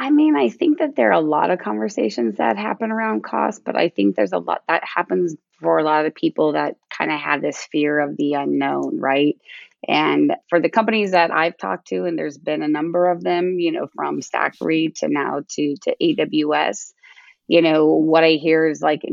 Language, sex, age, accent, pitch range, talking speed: English, female, 20-39, American, 145-175 Hz, 220 wpm